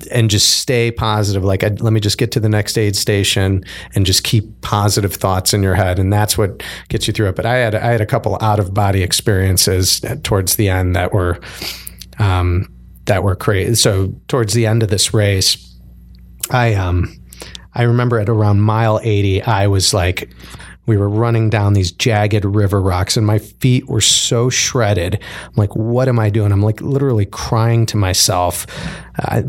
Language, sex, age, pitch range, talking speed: English, male, 30-49, 95-115 Hz, 190 wpm